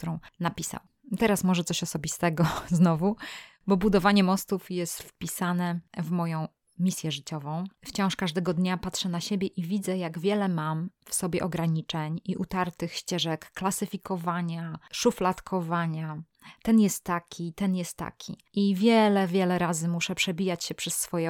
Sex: female